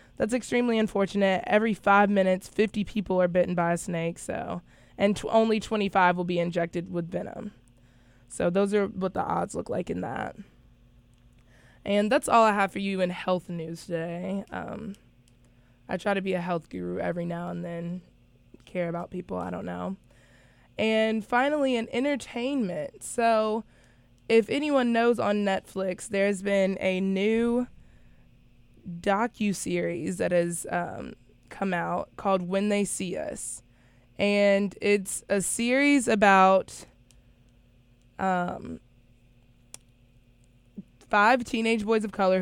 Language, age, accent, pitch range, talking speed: English, 20-39, American, 165-205 Hz, 135 wpm